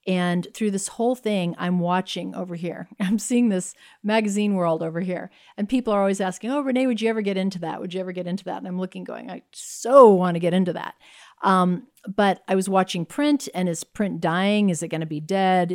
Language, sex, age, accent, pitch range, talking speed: English, female, 50-69, American, 170-205 Hz, 235 wpm